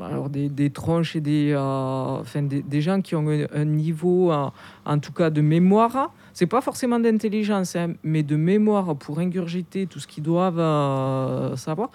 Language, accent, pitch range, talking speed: French, French, 145-180 Hz, 185 wpm